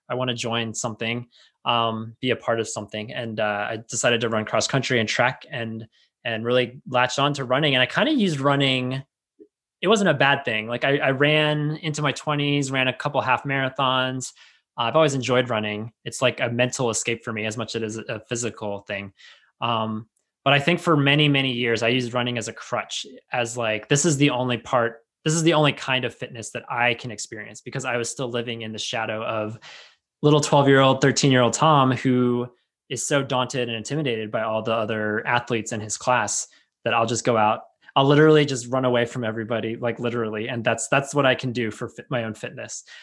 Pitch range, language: 115-140 Hz, English